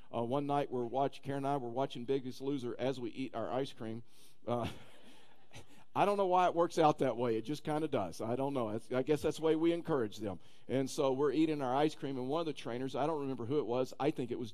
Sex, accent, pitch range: male, American, 125-155 Hz